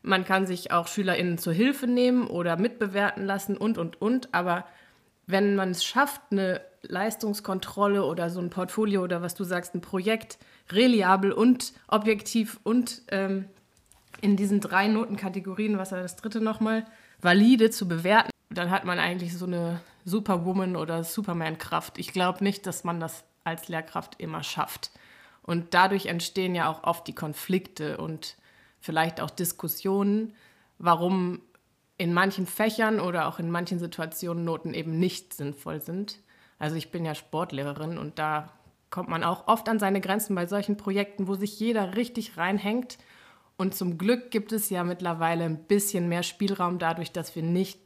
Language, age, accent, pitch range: German, 20-39, German, 170-205 Hz